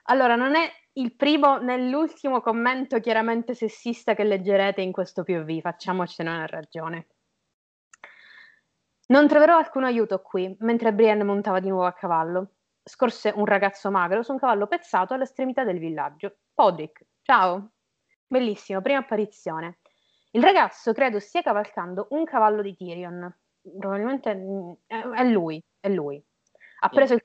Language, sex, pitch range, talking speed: Italian, female, 180-245 Hz, 140 wpm